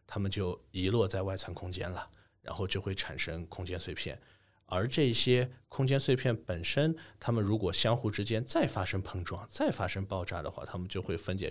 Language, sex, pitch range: Chinese, male, 95-115 Hz